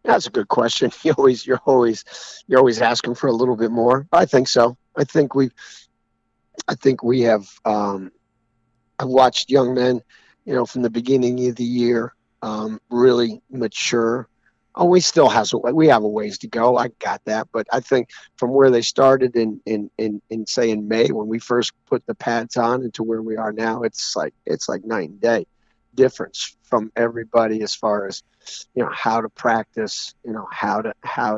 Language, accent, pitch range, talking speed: English, American, 110-125 Hz, 200 wpm